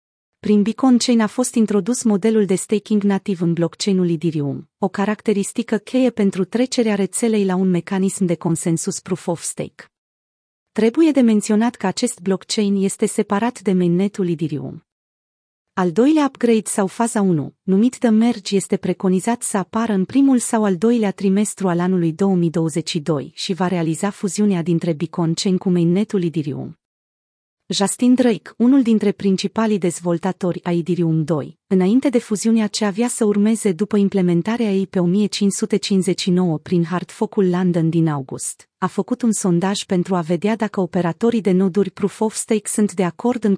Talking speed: 150 wpm